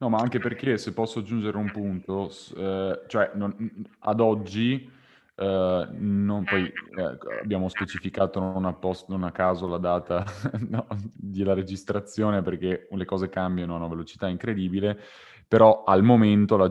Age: 20-39